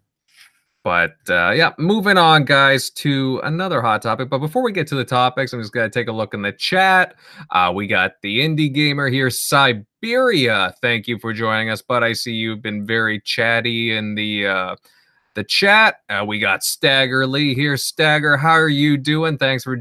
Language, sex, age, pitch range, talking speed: English, male, 30-49, 115-150 Hz, 195 wpm